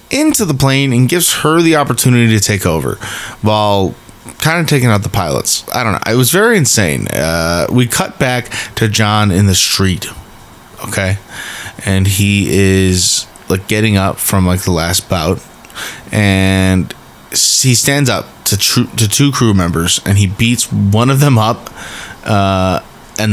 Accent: American